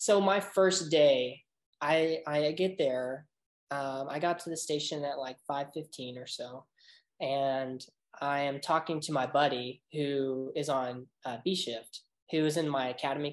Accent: American